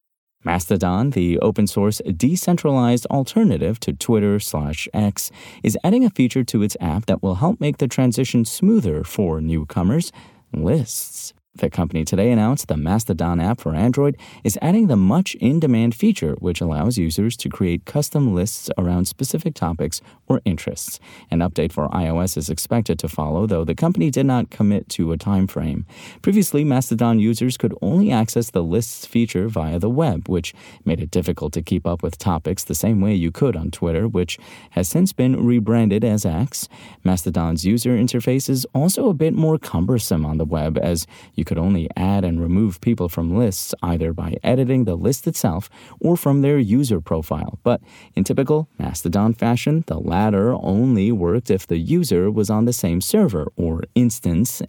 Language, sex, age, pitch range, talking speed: English, male, 30-49, 85-125 Hz, 170 wpm